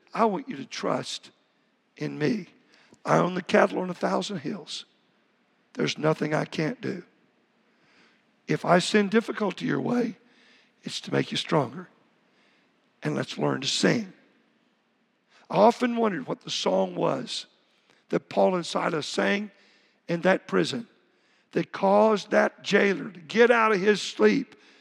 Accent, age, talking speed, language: American, 60-79, 150 wpm, English